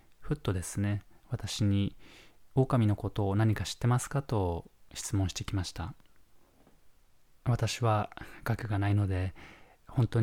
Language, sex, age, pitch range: Japanese, male, 20-39, 100-115 Hz